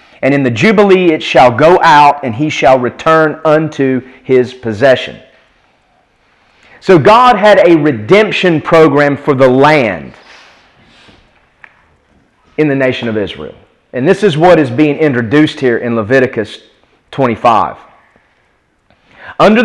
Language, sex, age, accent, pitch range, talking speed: English, male, 40-59, American, 130-180 Hz, 125 wpm